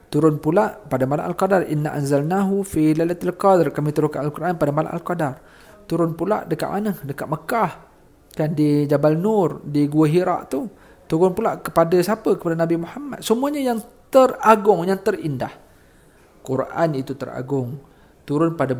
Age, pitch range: 40-59, 140-195 Hz